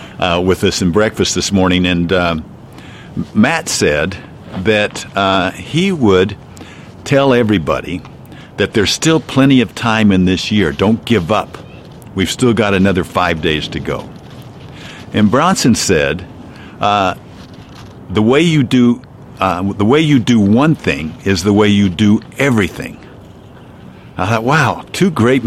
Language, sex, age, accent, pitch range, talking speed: English, male, 50-69, American, 95-125 Hz, 150 wpm